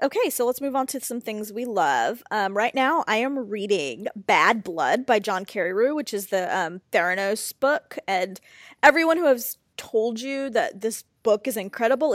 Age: 20-39